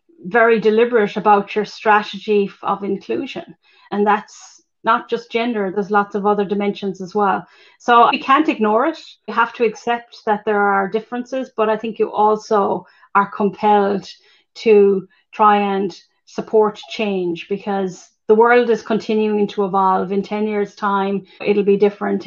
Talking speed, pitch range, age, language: 155 wpm, 195-220 Hz, 30-49, English